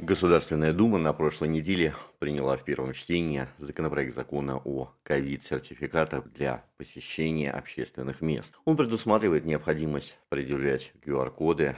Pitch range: 65-85 Hz